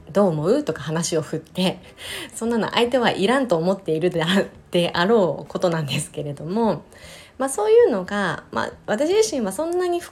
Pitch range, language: 165-260 Hz, Japanese